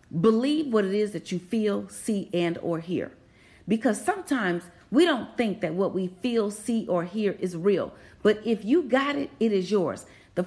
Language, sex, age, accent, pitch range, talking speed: English, female, 40-59, American, 190-255 Hz, 195 wpm